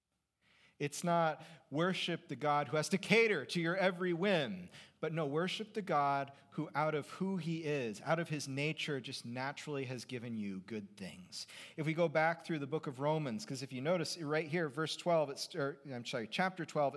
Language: English